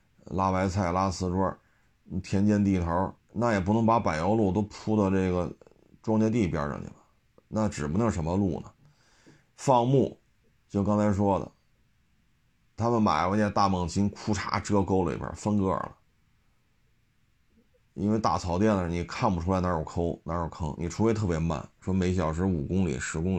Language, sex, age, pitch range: Chinese, male, 30-49, 85-110 Hz